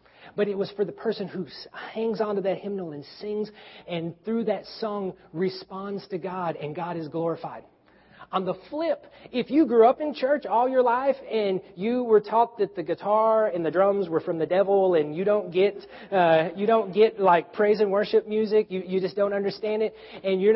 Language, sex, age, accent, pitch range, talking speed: English, male, 40-59, American, 165-215 Hz, 205 wpm